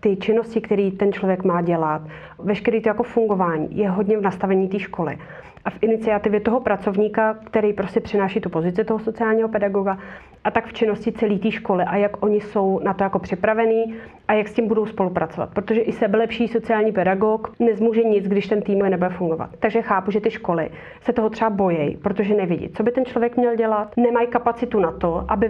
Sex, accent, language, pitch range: female, native, Czech, 195-225 Hz